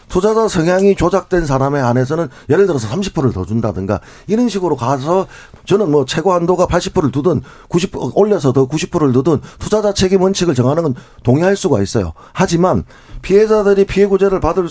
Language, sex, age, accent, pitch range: Korean, male, 40-59, native, 125-185 Hz